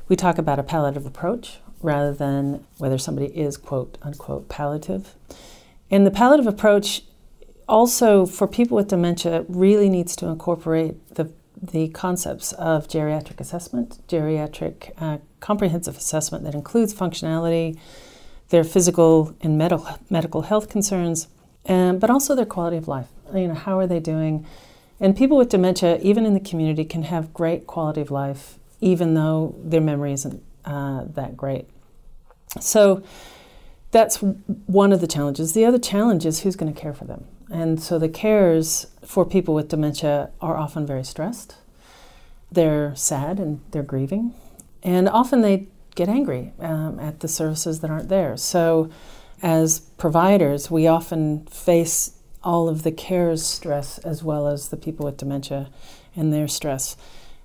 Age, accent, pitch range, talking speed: 40-59, American, 155-190 Hz, 155 wpm